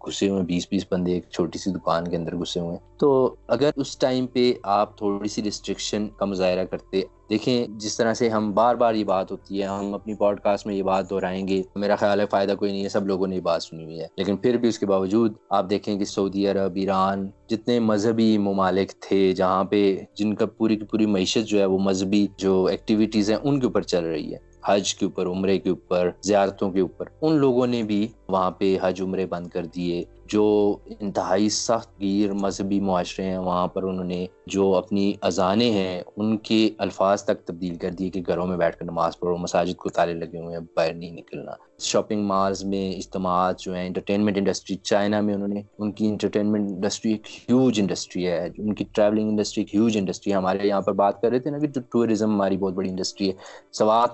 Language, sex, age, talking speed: Urdu, male, 20-39, 200 wpm